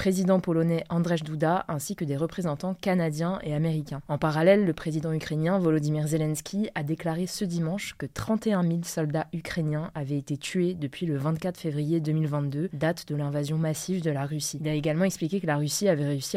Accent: French